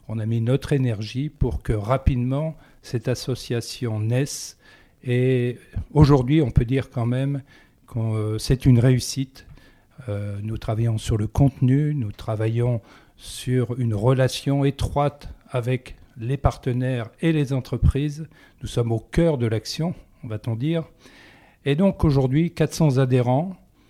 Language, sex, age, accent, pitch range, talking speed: French, male, 50-69, French, 115-140 Hz, 140 wpm